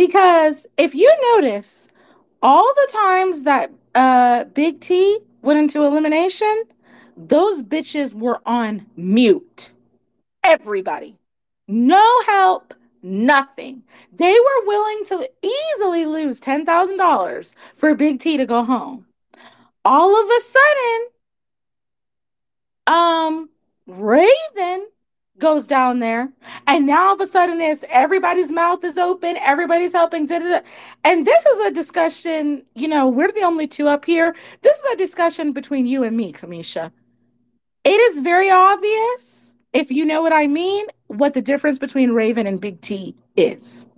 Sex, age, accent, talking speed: female, 30-49, American, 135 wpm